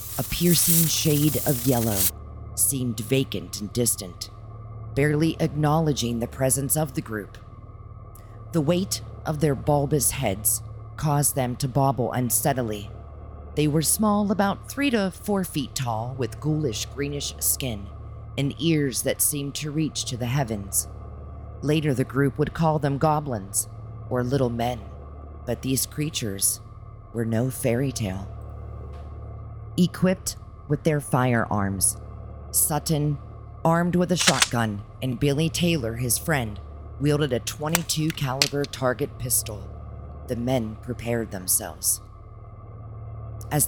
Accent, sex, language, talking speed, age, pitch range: American, female, English, 125 wpm, 40-59, 105-145 Hz